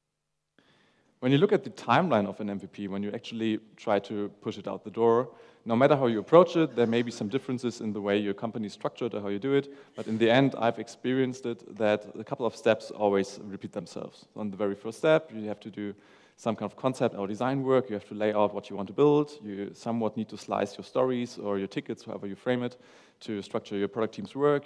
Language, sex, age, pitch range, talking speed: English, male, 30-49, 105-130 Hz, 250 wpm